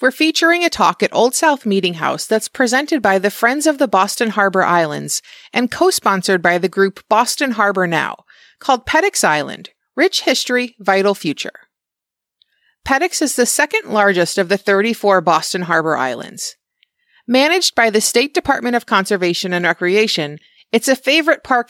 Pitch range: 190-280 Hz